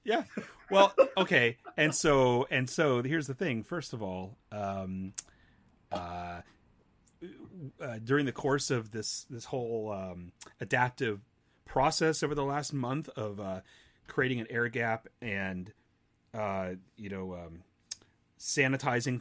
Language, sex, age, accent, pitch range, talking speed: English, male, 30-49, American, 105-130 Hz, 130 wpm